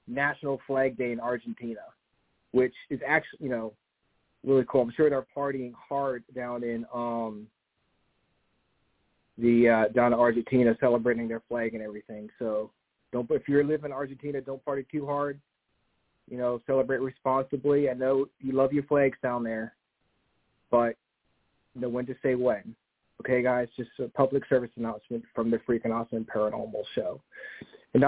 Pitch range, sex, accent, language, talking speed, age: 120-140 Hz, male, American, English, 155 wpm, 30-49